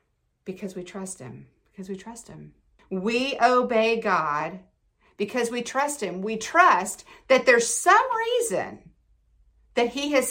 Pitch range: 190-280 Hz